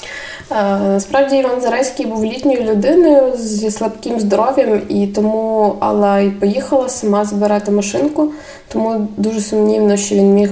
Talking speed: 130 wpm